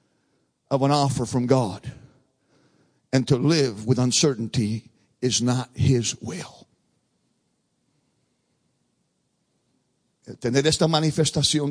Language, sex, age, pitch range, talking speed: English, male, 50-69, 125-155 Hz, 85 wpm